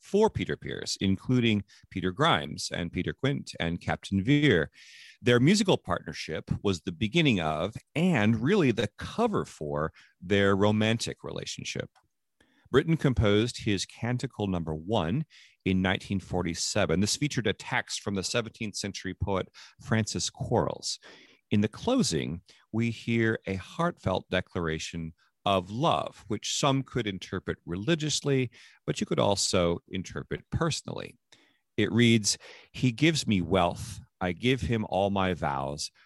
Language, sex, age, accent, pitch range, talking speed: English, male, 40-59, American, 85-120 Hz, 135 wpm